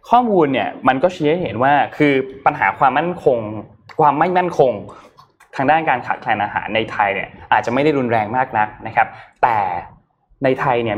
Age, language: 20-39, Thai